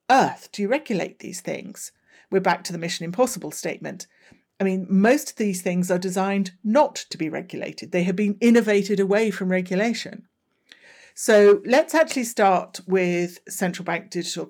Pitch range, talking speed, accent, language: 175-205 Hz, 160 wpm, British, English